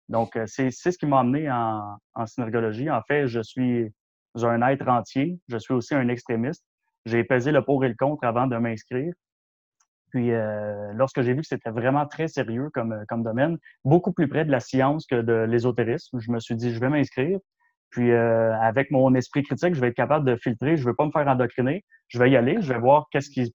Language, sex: French, male